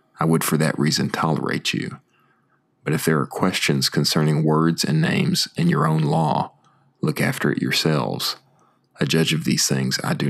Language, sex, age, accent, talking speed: English, male, 40-59, American, 180 wpm